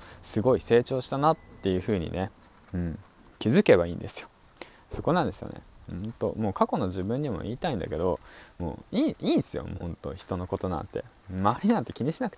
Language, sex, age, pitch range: Japanese, male, 20-39, 85-115 Hz